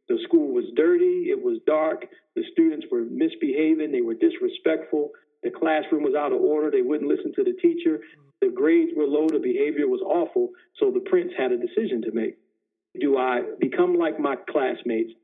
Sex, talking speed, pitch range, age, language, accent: male, 190 wpm, 330-385 Hz, 50-69, English, American